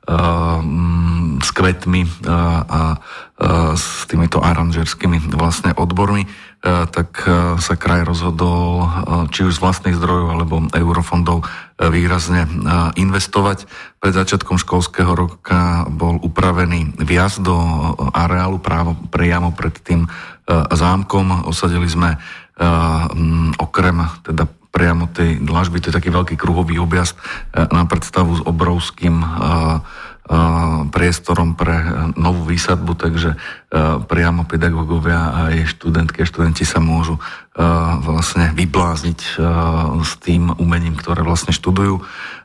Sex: male